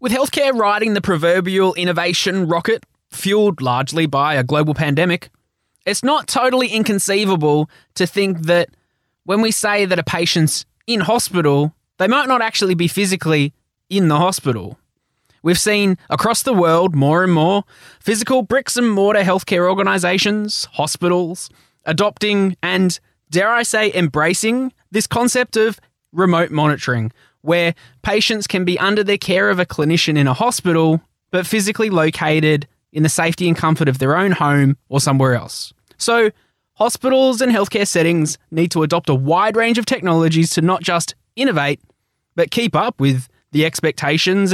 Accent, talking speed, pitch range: Australian, 155 wpm, 150-200 Hz